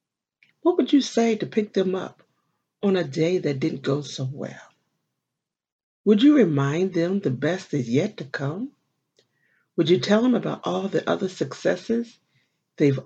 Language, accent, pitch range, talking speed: English, American, 155-230 Hz, 165 wpm